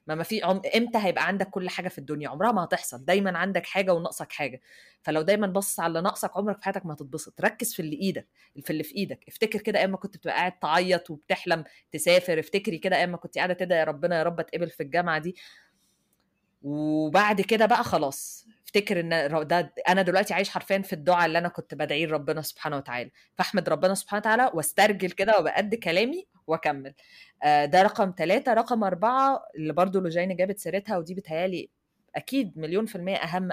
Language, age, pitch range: Arabic, 20-39, 155-195 Hz